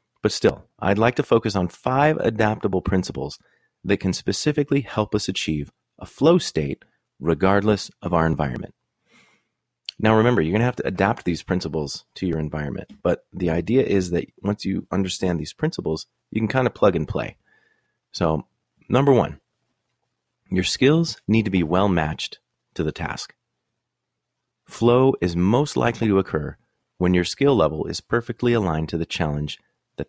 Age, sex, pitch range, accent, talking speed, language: 30-49, male, 80-115 Hz, American, 165 wpm, English